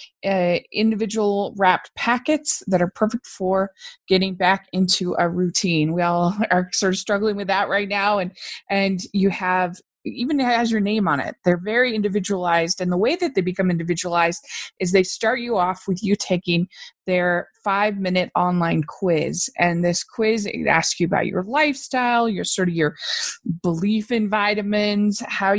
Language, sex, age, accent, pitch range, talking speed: English, female, 20-39, American, 175-210 Hz, 170 wpm